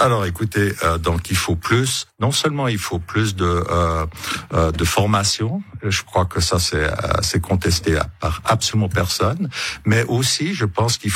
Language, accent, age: French, French, 60-79